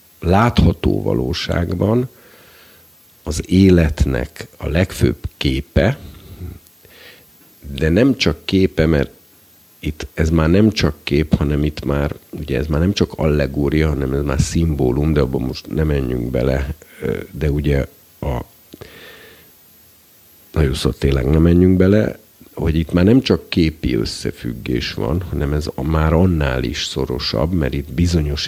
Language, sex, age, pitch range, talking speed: Hungarian, male, 50-69, 75-85 Hz, 135 wpm